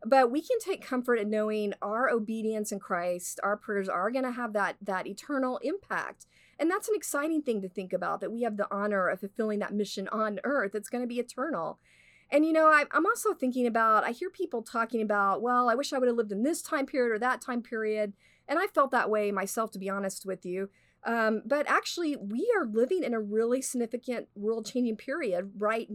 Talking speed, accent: 225 wpm, American